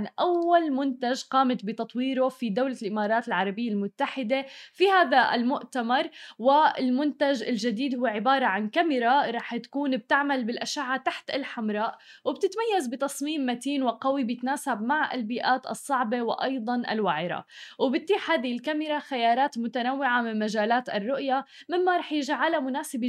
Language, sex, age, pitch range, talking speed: Arabic, female, 20-39, 230-275 Hz, 120 wpm